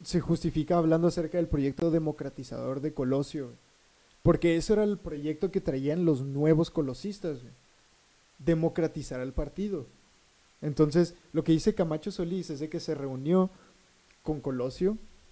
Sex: male